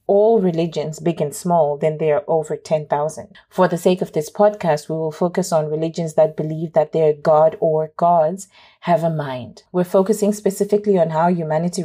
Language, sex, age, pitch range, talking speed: English, female, 30-49, 155-195 Hz, 185 wpm